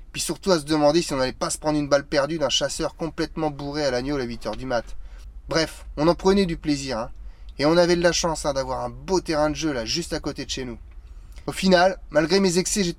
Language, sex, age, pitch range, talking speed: French, male, 20-39, 125-170 Hz, 265 wpm